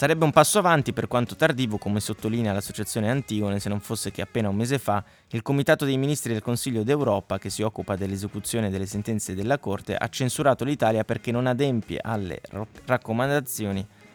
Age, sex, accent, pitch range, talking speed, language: 20-39, male, native, 100-130 Hz, 180 wpm, Italian